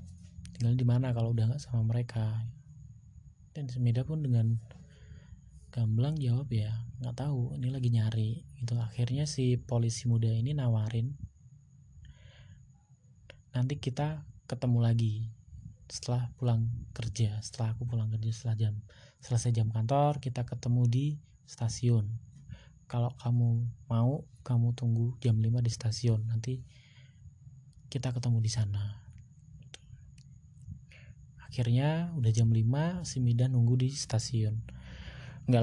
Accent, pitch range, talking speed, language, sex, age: native, 115-130 Hz, 120 wpm, Indonesian, male, 20-39